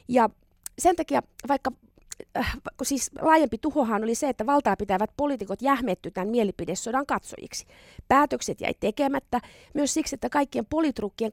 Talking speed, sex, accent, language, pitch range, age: 140 wpm, female, native, Finnish, 220-290 Hz, 30-49